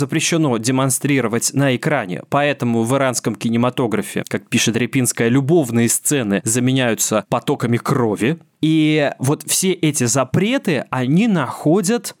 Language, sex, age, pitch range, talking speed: Russian, male, 20-39, 125-170 Hz, 115 wpm